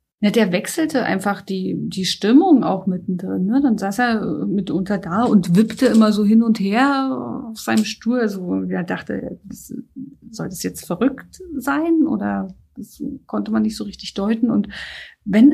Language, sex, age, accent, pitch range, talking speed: German, female, 30-49, German, 200-245 Hz, 165 wpm